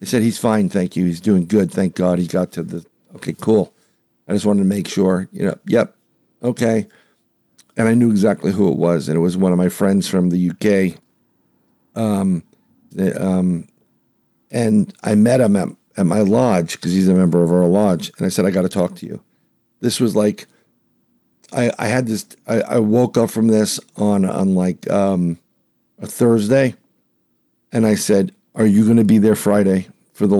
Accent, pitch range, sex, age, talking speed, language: American, 90-115 Hz, male, 50-69, 200 wpm, English